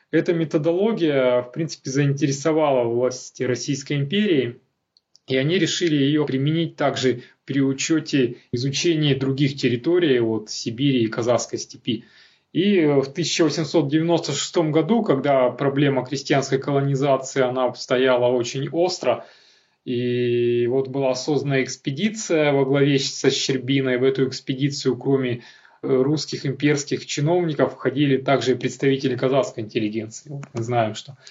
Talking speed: 120 wpm